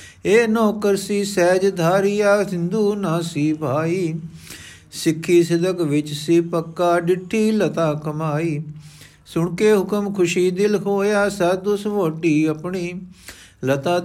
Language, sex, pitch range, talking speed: Punjabi, male, 155-195 Hz, 105 wpm